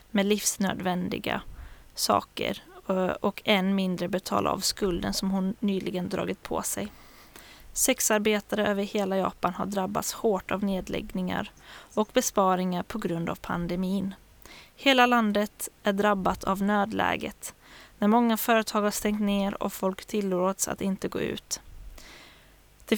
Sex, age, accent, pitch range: female, 20-39, native, 190-215 Hz